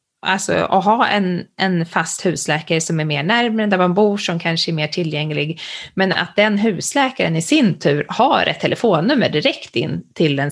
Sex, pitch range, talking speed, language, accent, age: female, 165-210 Hz, 190 wpm, Swedish, native, 20-39